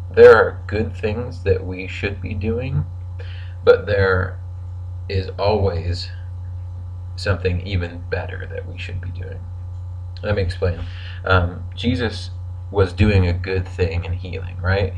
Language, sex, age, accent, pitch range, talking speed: English, male, 30-49, American, 90-95 Hz, 135 wpm